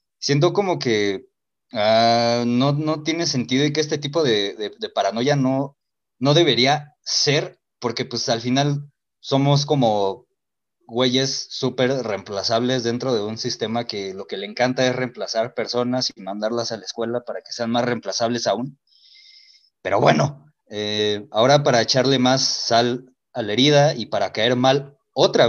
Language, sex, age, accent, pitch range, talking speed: Spanish, male, 20-39, Mexican, 120-150 Hz, 160 wpm